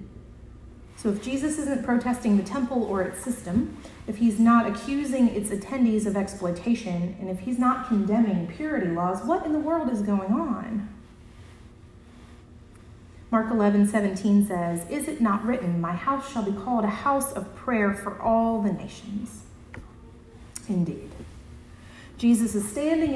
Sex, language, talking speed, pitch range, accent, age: female, English, 145 wpm, 175-235 Hz, American, 30-49